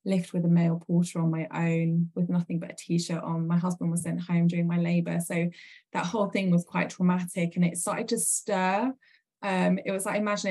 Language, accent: English, British